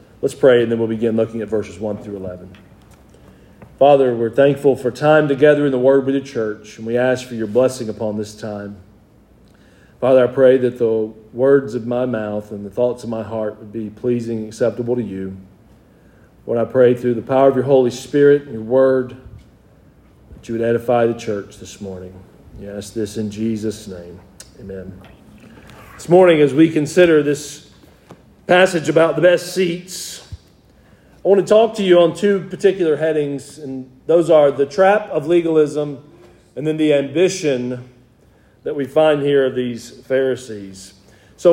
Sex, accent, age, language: male, American, 40-59, English